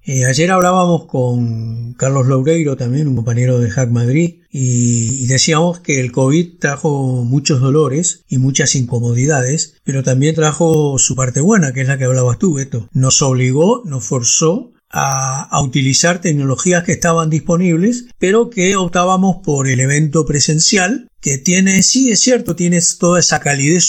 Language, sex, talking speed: Spanish, male, 160 wpm